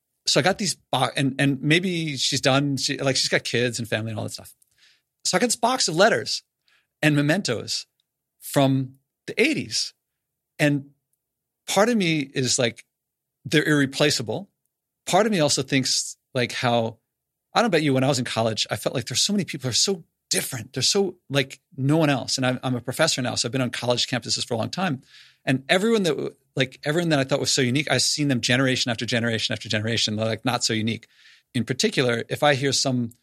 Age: 40-59